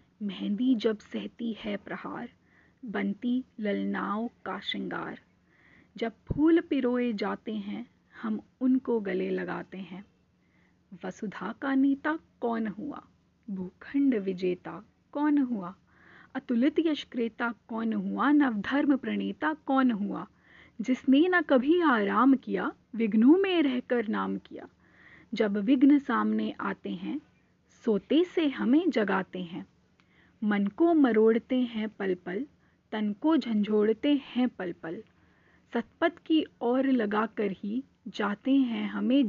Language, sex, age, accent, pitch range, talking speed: Hindi, female, 30-49, native, 205-260 Hz, 120 wpm